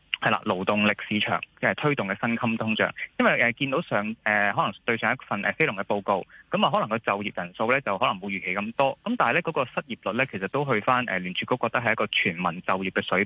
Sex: male